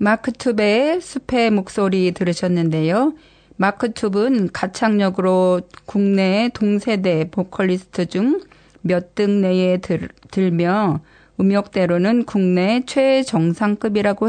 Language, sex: Korean, female